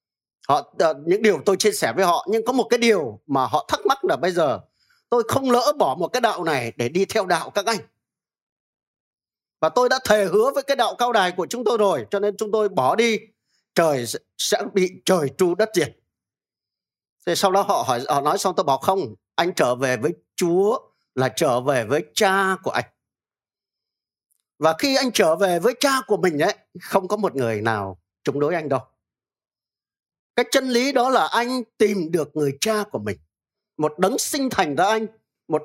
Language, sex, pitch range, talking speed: Vietnamese, male, 145-220 Hz, 205 wpm